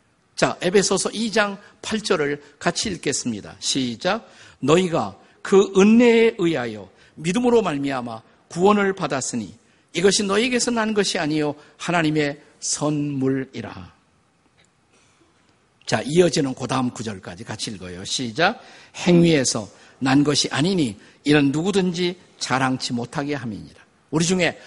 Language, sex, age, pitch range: Korean, male, 50-69, 145-210 Hz